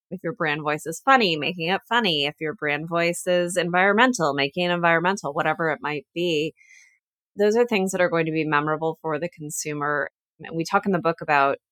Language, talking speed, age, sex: English, 205 wpm, 30-49, female